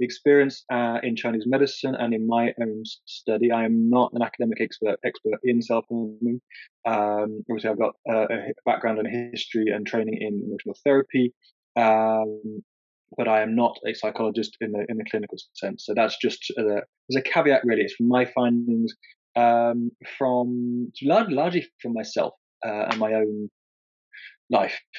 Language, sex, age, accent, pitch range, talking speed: English, male, 20-39, British, 110-130 Hz, 160 wpm